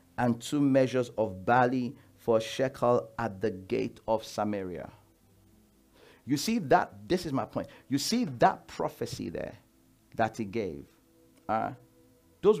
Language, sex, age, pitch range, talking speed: English, male, 50-69, 110-180 Hz, 140 wpm